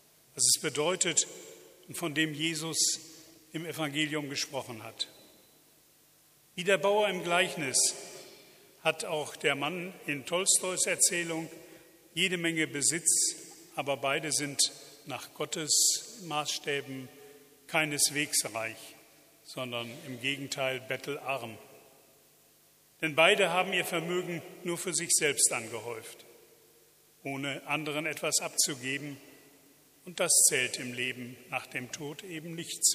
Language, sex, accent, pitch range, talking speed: German, male, German, 140-175 Hz, 115 wpm